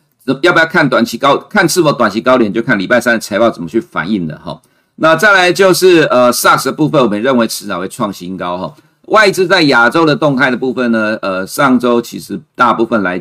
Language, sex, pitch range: Chinese, male, 105-135 Hz